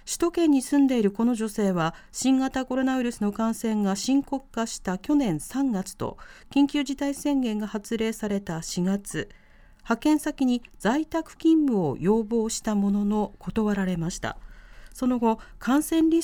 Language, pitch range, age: Japanese, 205-270 Hz, 40-59